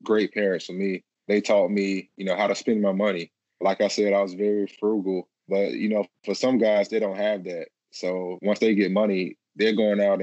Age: 20-39